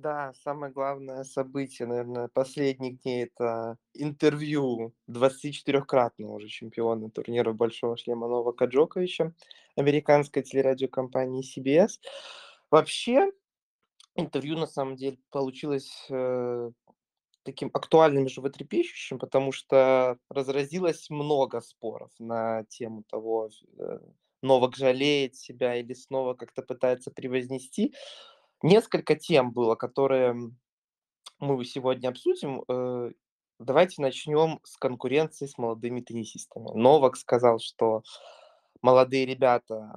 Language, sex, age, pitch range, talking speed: Russian, male, 20-39, 120-145 Hz, 100 wpm